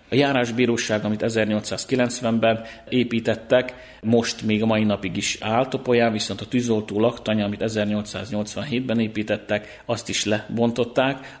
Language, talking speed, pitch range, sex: Hungarian, 125 wpm, 105-120 Hz, male